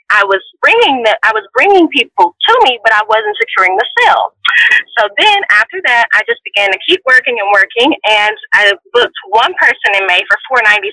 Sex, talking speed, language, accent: female, 210 wpm, English, American